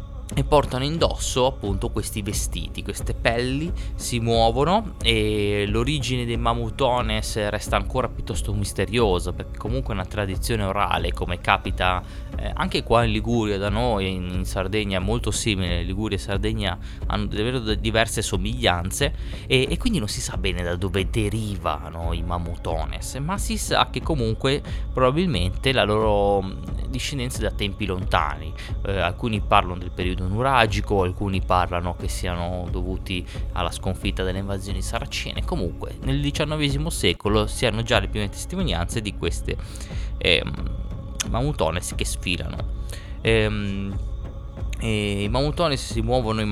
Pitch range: 95-115 Hz